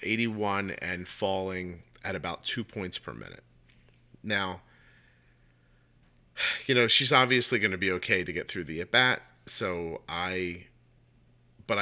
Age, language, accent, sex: 40-59, English, American, male